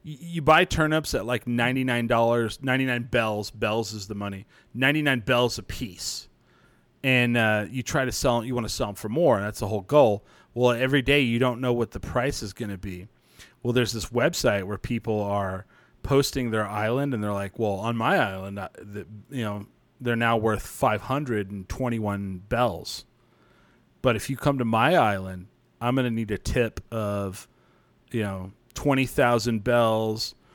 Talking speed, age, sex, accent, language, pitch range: 180 wpm, 30-49, male, American, English, 110-130 Hz